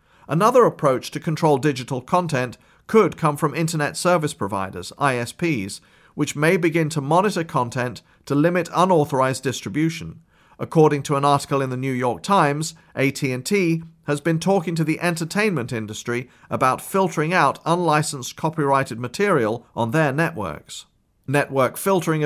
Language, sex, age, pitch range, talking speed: English, male, 40-59, 130-165 Hz, 135 wpm